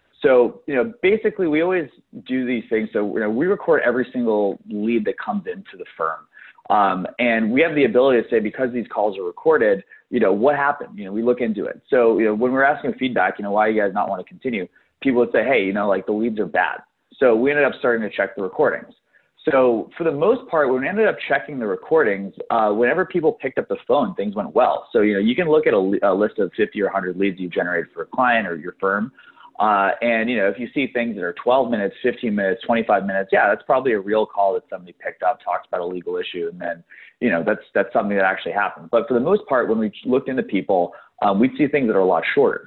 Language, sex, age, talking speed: English, male, 30-49, 260 wpm